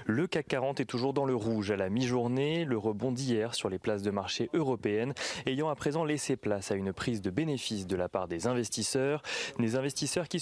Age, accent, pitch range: 20-39, French, 110-140 Hz